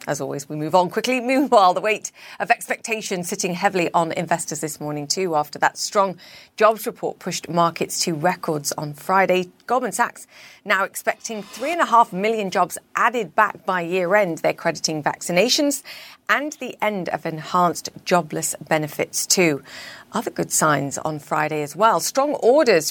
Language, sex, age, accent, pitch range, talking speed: English, female, 40-59, British, 170-220 Hz, 170 wpm